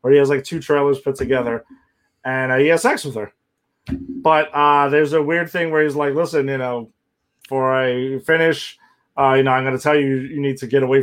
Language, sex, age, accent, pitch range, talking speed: English, male, 30-49, American, 130-165 Hz, 230 wpm